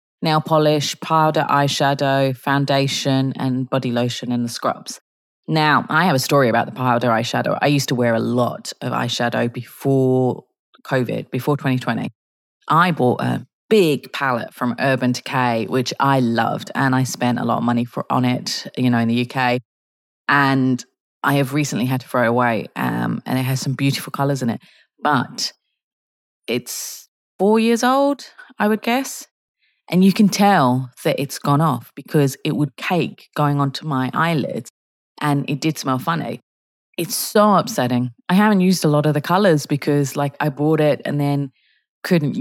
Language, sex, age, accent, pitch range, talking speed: English, female, 30-49, British, 125-150 Hz, 175 wpm